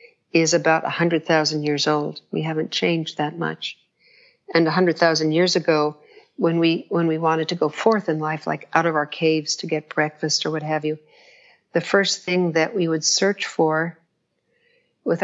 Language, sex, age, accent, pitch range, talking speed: English, female, 60-79, American, 160-215 Hz, 195 wpm